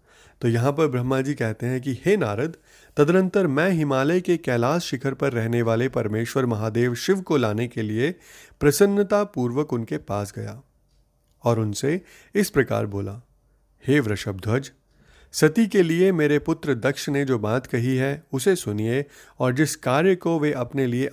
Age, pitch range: 30-49, 115-155 Hz